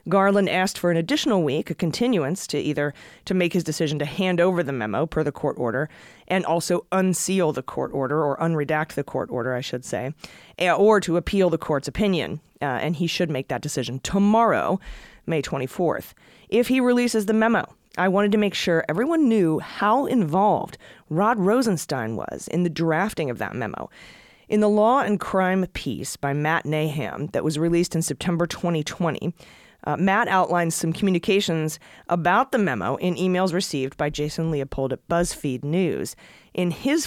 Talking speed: 180 wpm